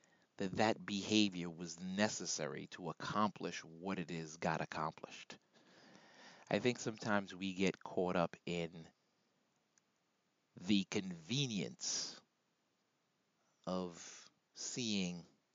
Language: English